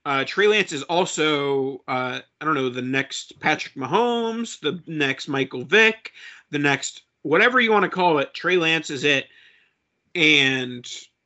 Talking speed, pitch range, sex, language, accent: 160 wpm, 140-175 Hz, male, English, American